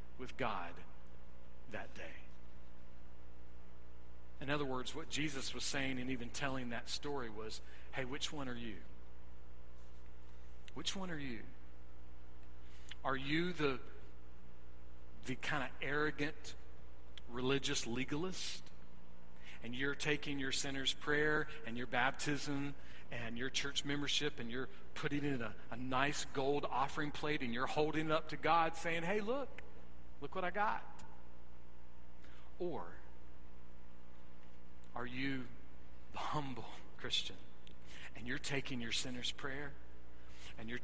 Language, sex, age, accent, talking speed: English, male, 40-59, American, 125 wpm